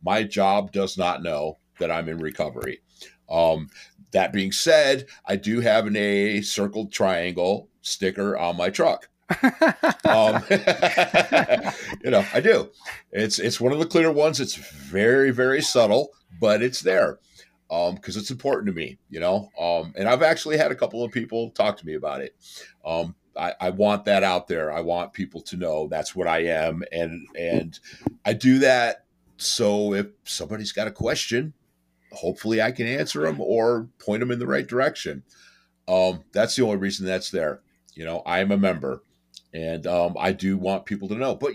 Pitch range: 85-115 Hz